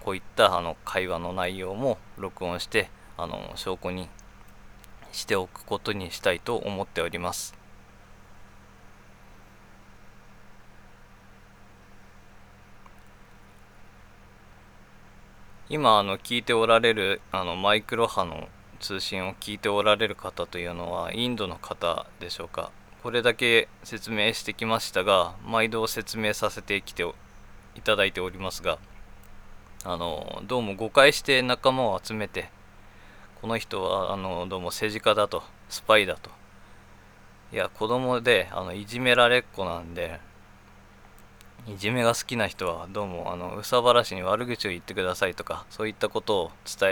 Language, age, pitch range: Japanese, 20-39, 95-115 Hz